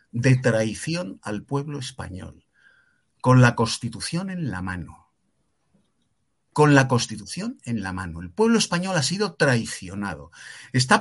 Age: 50-69